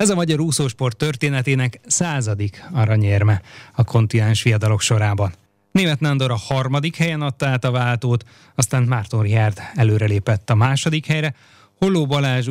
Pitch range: 115-140 Hz